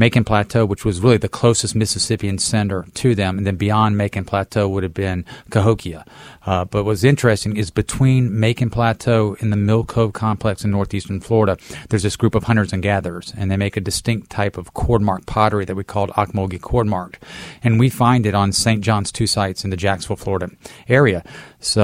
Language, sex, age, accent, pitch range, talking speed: English, male, 40-59, American, 95-110 Hz, 200 wpm